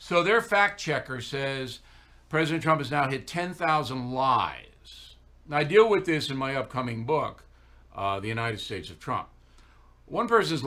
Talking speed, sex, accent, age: 165 wpm, male, American, 60-79